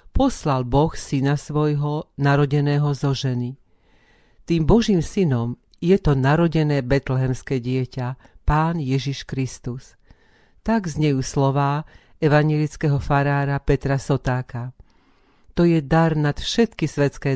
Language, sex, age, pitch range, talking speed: Slovak, female, 50-69, 135-155 Hz, 105 wpm